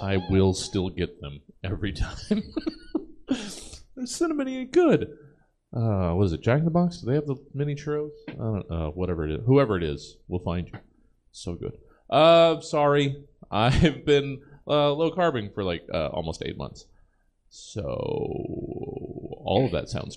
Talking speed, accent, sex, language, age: 165 wpm, American, male, English, 30-49